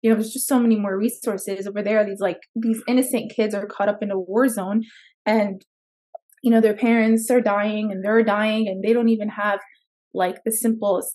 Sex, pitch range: female, 200-225 Hz